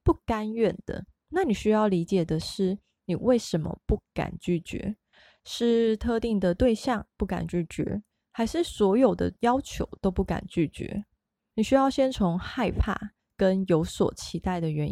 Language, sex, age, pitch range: Chinese, female, 20-39, 175-220 Hz